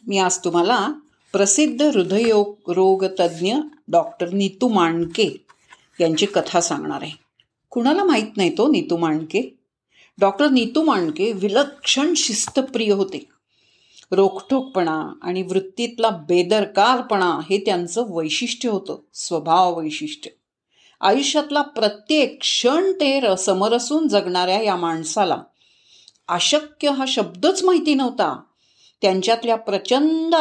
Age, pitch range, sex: 50-69, 190-275 Hz, female